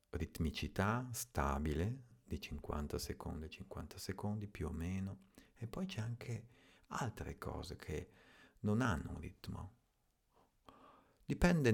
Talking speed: 110 wpm